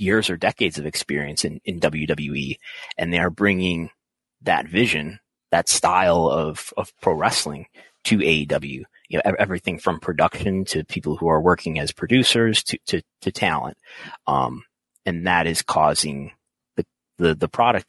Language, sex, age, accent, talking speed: English, male, 30-49, American, 160 wpm